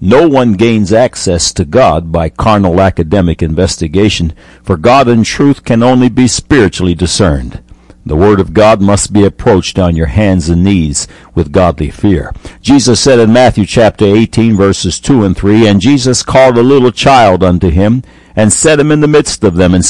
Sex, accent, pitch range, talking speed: male, American, 85-115 Hz, 185 wpm